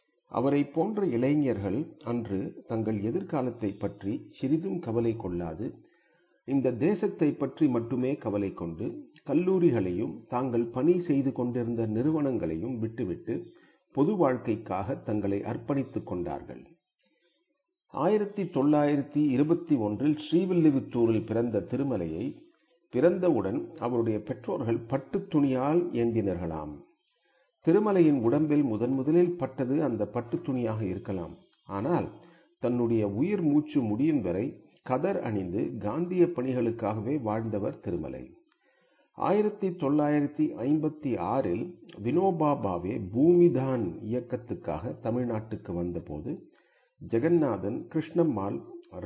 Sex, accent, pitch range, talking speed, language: male, native, 115-160 Hz, 80 wpm, Tamil